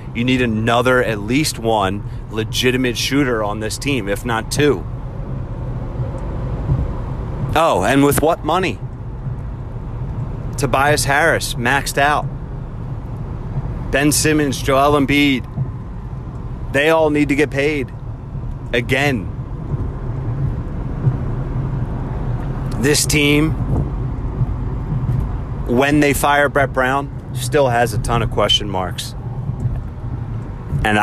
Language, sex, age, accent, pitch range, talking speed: English, male, 30-49, American, 110-130 Hz, 95 wpm